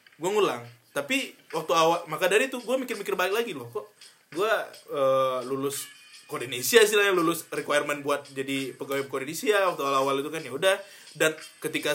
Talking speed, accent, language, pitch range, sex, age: 160 wpm, native, Indonesian, 145-175 Hz, male, 20-39